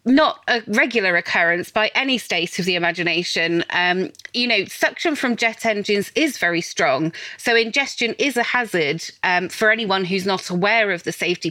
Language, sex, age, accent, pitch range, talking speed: English, female, 30-49, British, 180-230 Hz, 175 wpm